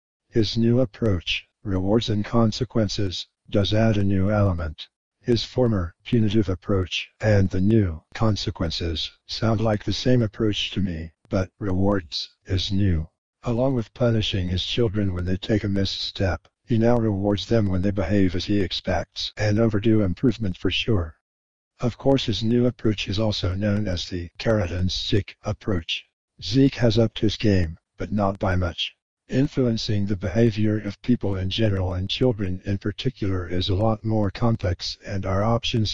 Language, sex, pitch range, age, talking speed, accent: English, male, 95-110 Hz, 60-79, 160 wpm, American